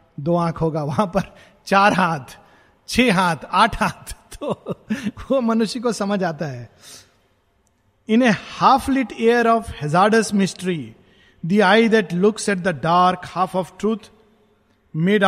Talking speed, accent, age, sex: 145 wpm, native, 50-69, male